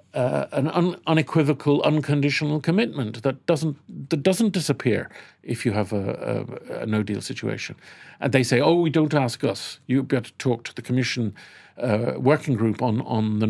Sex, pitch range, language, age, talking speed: male, 115-155 Hz, English, 50-69, 180 wpm